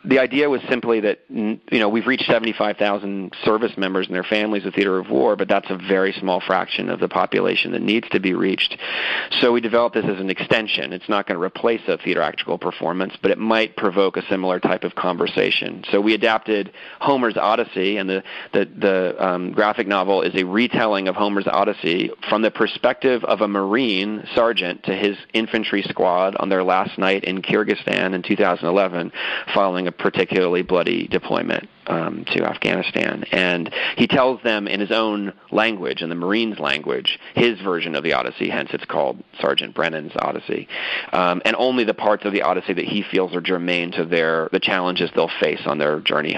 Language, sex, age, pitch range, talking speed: English, male, 40-59, 90-105 Hz, 190 wpm